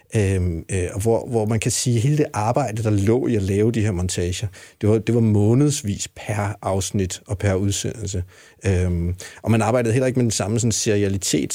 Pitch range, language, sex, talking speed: 95-115 Hz, Danish, male, 185 wpm